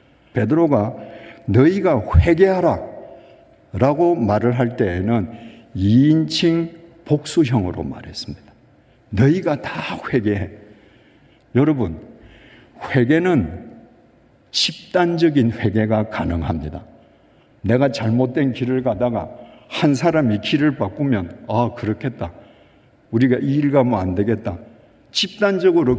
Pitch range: 110-165 Hz